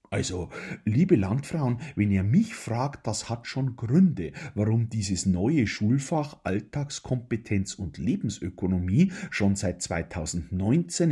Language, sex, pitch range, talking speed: German, male, 95-130 Hz, 115 wpm